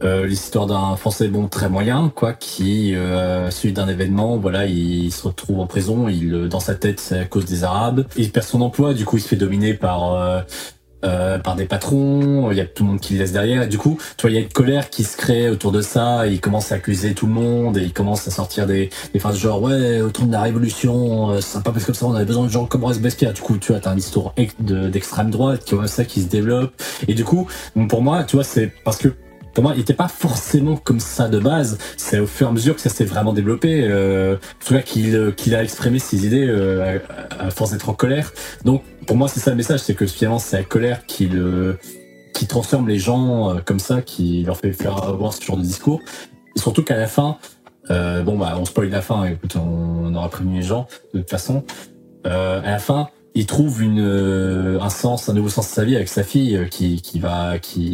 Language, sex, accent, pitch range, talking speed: French, male, French, 95-120 Hz, 250 wpm